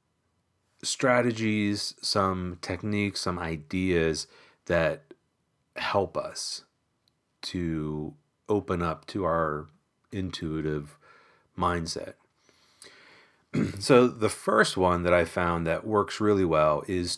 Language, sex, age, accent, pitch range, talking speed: English, male, 40-59, American, 85-105 Hz, 95 wpm